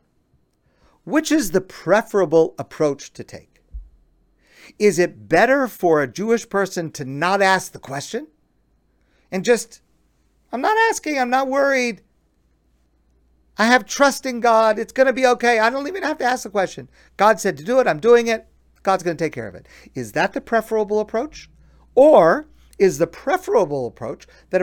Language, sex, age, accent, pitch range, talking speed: English, male, 50-69, American, 150-230 Hz, 175 wpm